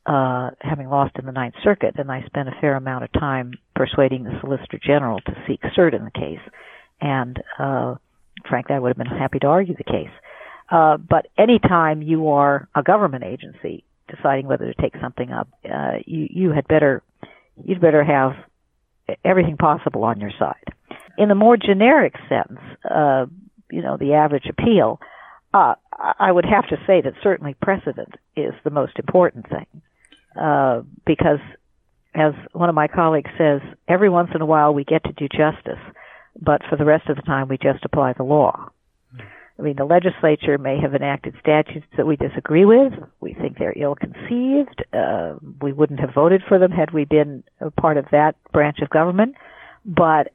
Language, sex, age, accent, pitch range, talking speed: English, female, 60-79, American, 140-175 Hz, 185 wpm